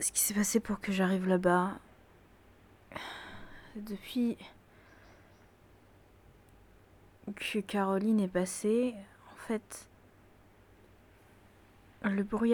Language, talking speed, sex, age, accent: French, 80 wpm, female, 20-39, French